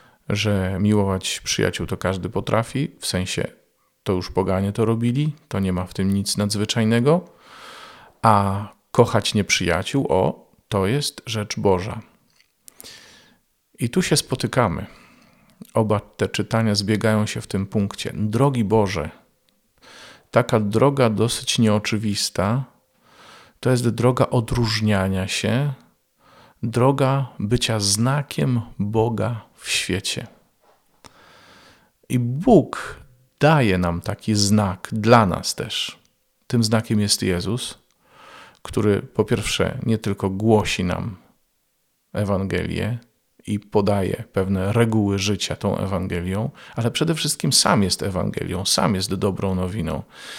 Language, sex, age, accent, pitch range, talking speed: Polish, male, 40-59, native, 100-120 Hz, 115 wpm